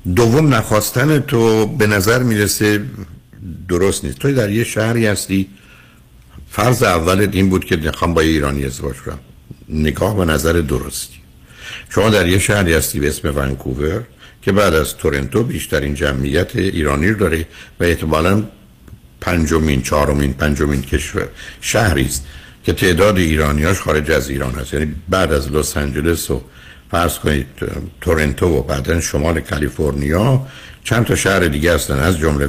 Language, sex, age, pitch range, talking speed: Persian, male, 60-79, 70-105 Hz, 150 wpm